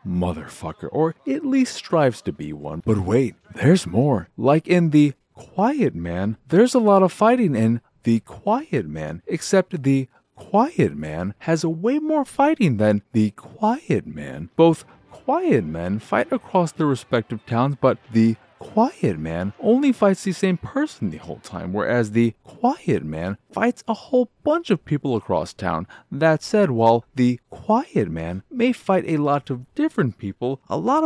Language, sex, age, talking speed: English, male, 30-49, 165 wpm